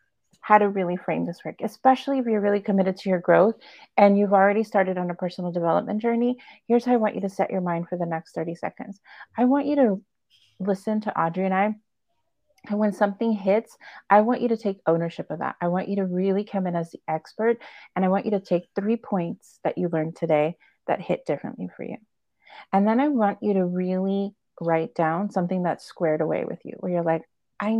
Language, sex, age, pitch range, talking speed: English, female, 30-49, 175-220 Hz, 225 wpm